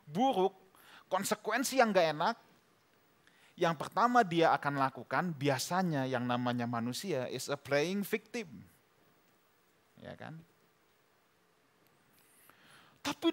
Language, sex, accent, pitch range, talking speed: Indonesian, male, native, 135-200 Hz, 95 wpm